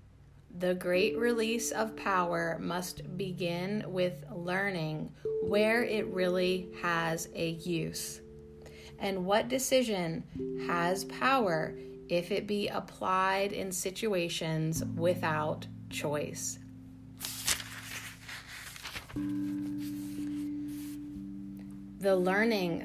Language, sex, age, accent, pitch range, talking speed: English, female, 30-49, American, 135-195 Hz, 80 wpm